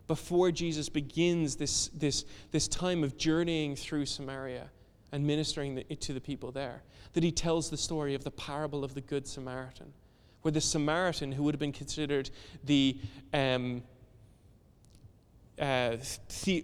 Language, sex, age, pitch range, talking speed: English, male, 20-39, 130-160 Hz, 150 wpm